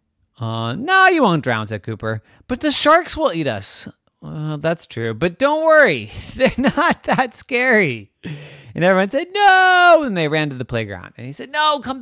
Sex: male